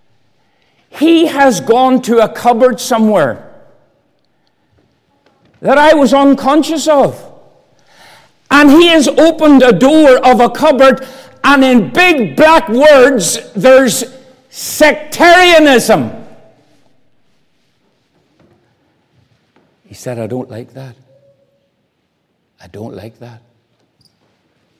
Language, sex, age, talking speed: English, male, 60-79, 90 wpm